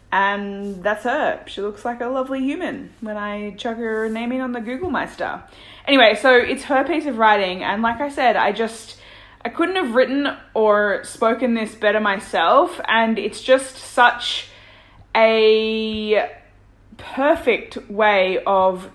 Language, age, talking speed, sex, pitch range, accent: English, 20-39, 155 wpm, female, 200-255 Hz, Australian